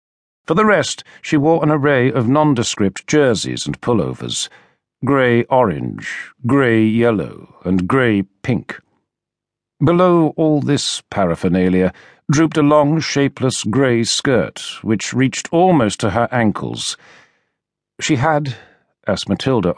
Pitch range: 100-145 Hz